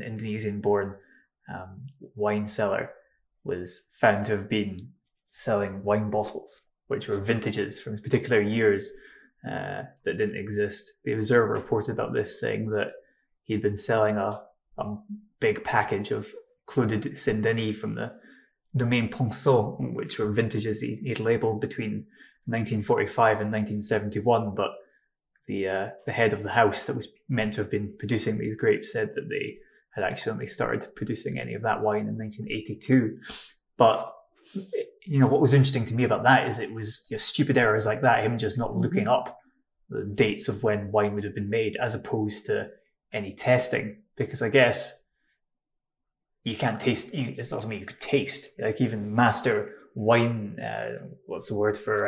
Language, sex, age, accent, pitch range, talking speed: English, male, 20-39, British, 105-125 Hz, 170 wpm